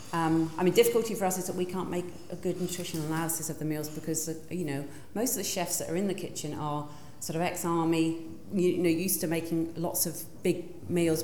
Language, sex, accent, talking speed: English, female, British, 230 wpm